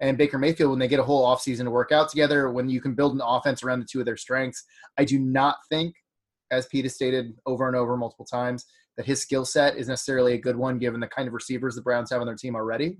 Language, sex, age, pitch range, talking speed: English, male, 20-39, 120-140 Hz, 275 wpm